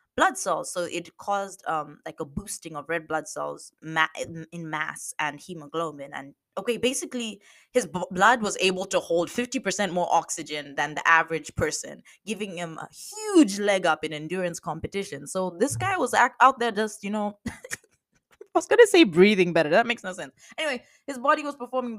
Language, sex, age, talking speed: English, female, 20-39, 185 wpm